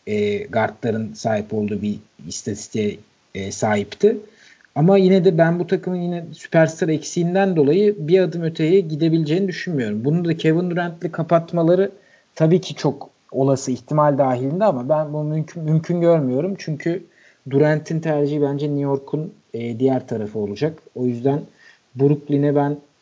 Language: Turkish